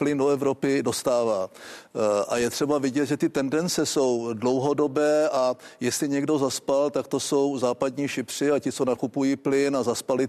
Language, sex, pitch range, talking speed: Czech, male, 125-140 Hz, 175 wpm